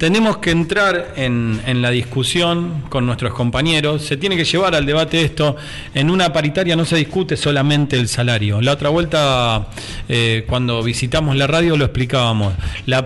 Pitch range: 115-155 Hz